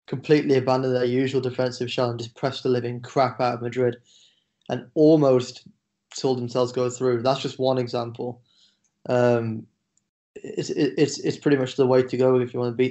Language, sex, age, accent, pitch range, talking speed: English, male, 10-29, British, 125-130 Hz, 190 wpm